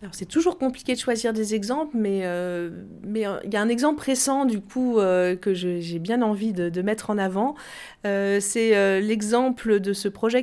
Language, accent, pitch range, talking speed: French, French, 175-225 Hz, 220 wpm